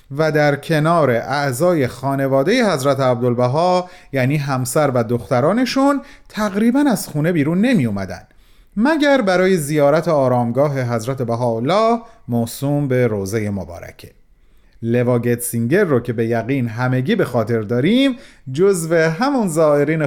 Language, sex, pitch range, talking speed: Persian, male, 125-205 Hz, 120 wpm